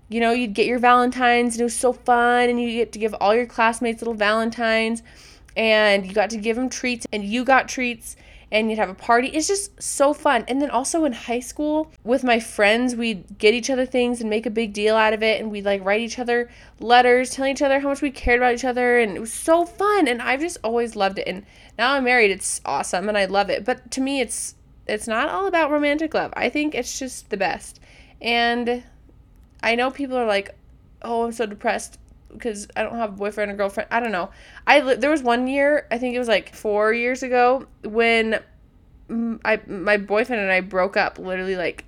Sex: female